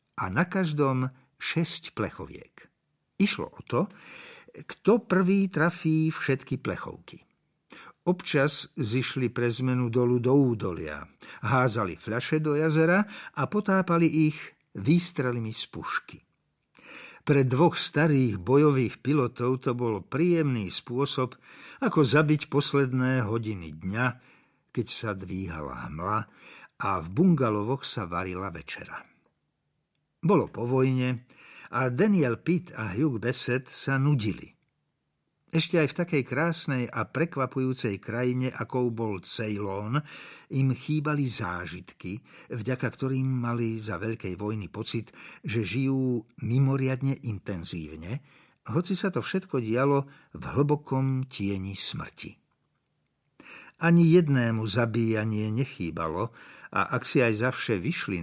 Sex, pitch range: male, 115-155 Hz